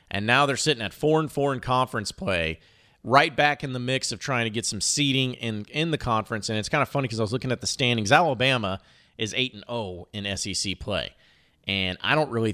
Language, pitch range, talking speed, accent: English, 100-135 Hz, 245 wpm, American